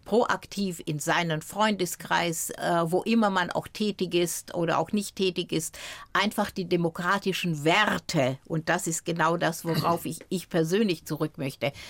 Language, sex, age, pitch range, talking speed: German, female, 60-79, 155-185 Hz, 155 wpm